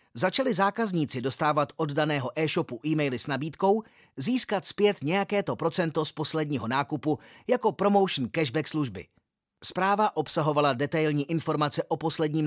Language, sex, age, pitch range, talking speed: Czech, male, 30-49, 140-180 Hz, 125 wpm